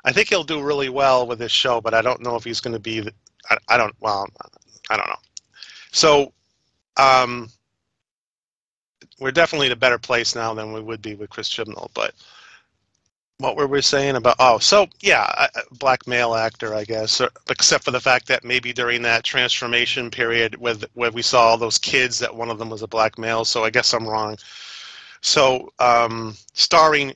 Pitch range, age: 115-130 Hz, 30-49